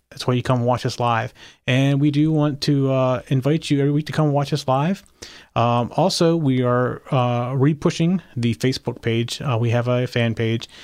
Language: English